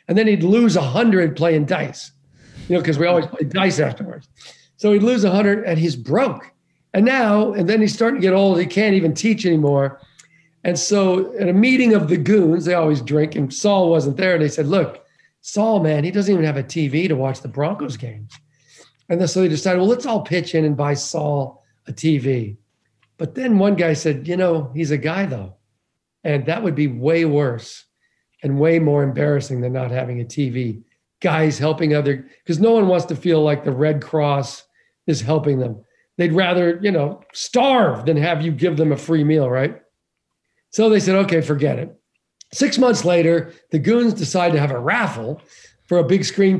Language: English